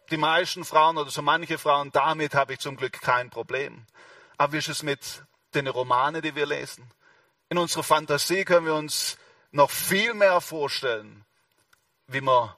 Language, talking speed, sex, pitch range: German, 170 wpm, male, 145-200 Hz